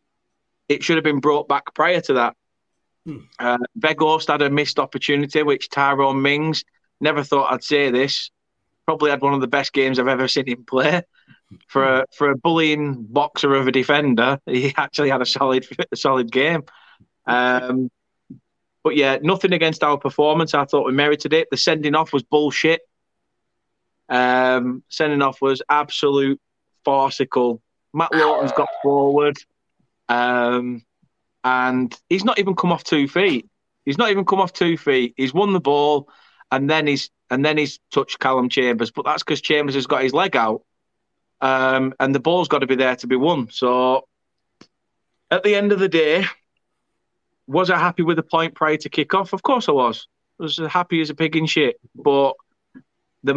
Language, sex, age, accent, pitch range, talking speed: English, male, 20-39, British, 130-155 Hz, 180 wpm